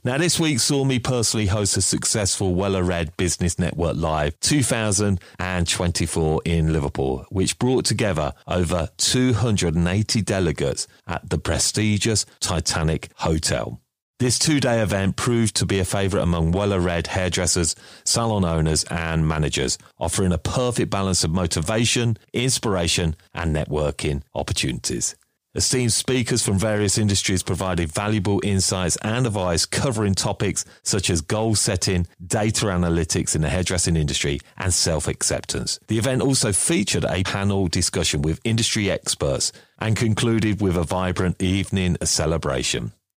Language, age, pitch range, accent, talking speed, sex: English, 40-59, 80-110 Hz, British, 130 wpm, male